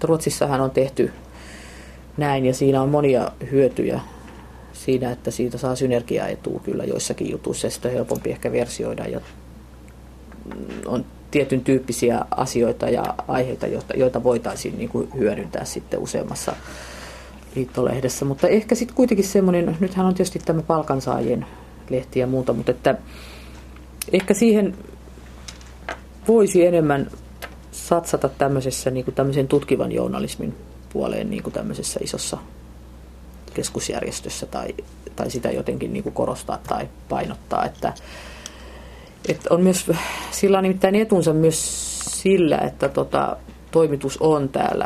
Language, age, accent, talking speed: Finnish, 30-49, native, 115 wpm